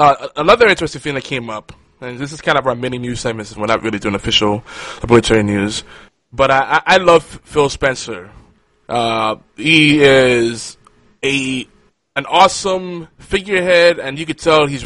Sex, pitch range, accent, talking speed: male, 120-155 Hz, American, 165 wpm